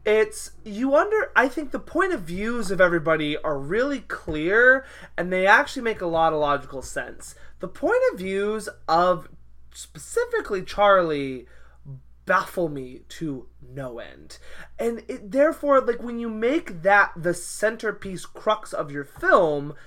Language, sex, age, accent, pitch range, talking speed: English, male, 20-39, American, 160-240 Hz, 150 wpm